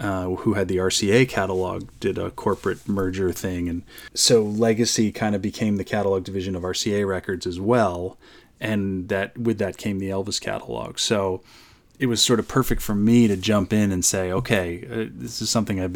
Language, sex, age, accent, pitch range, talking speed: English, male, 30-49, American, 95-110 Hz, 195 wpm